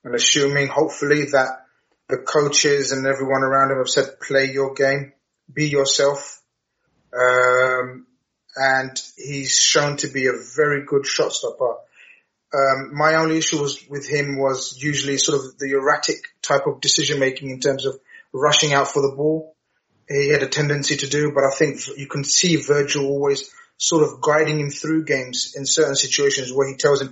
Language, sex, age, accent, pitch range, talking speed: English, male, 30-49, British, 135-150 Hz, 175 wpm